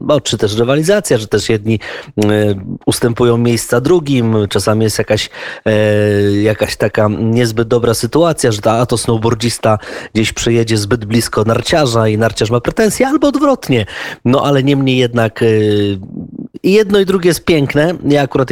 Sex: male